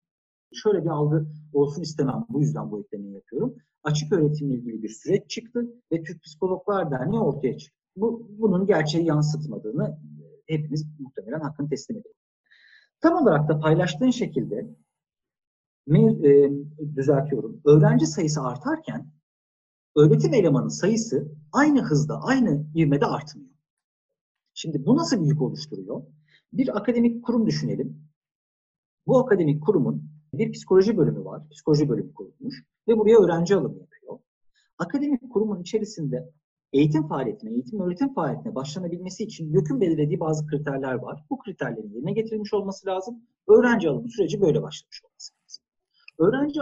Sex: male